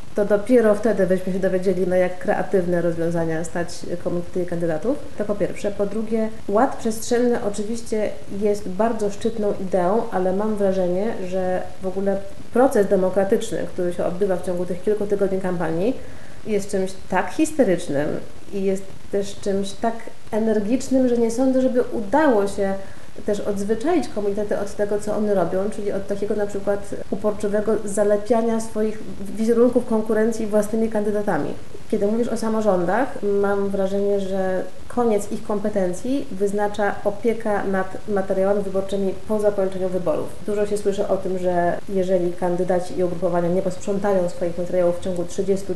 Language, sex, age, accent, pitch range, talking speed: Polish, female, 30-49, native, 180-210 Hz, 150 wpm